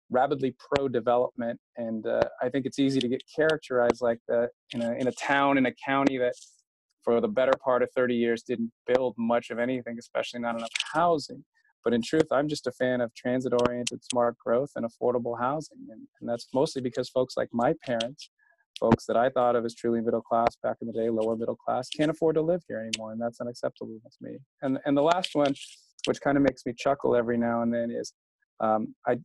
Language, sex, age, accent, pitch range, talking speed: English, male, 30-49, American, 120-135 Hz, 220 wpm